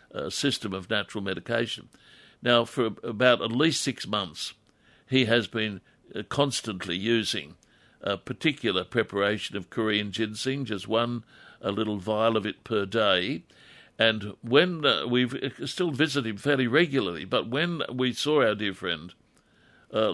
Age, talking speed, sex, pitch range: 60-79, 145 wpm, male, 105-130 Hz